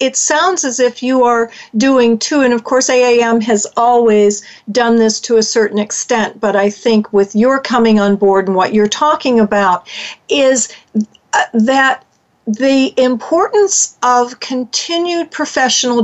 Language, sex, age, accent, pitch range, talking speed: English, female, 50-69, American, 205-255 Hz, 150 wpm